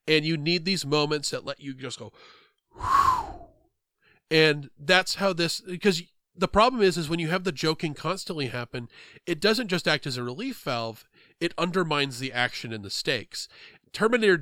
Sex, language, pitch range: male, English, 140-190 Hz